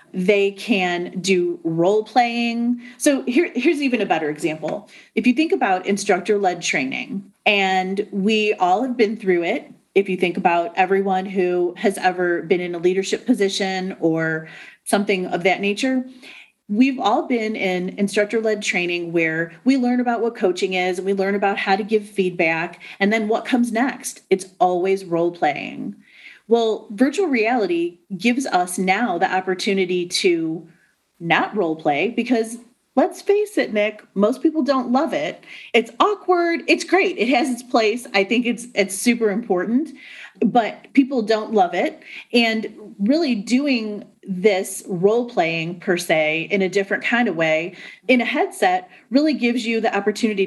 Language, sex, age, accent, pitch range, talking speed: English, female, 30-49, American, 185-245 Hz, 160 wpm